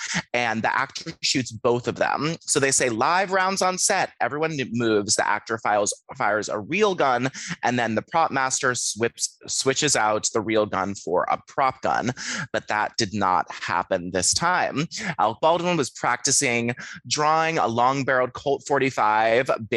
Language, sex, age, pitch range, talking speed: English, male, 30-49, 110-155 Hz, 165 wpm